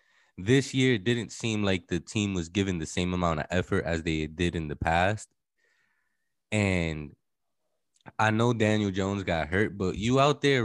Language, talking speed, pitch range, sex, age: English, 180 wpm, 85-110 Hz, male, 20-39